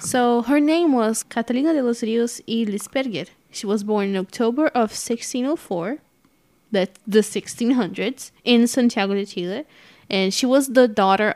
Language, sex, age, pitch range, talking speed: English, female, 10-29, 195-245 Hz, 155 wpm